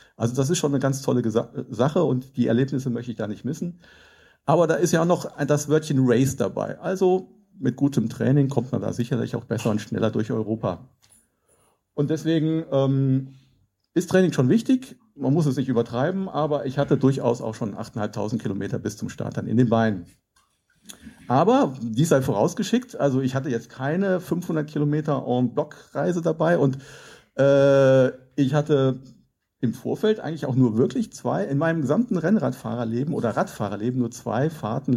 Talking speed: 170 wpm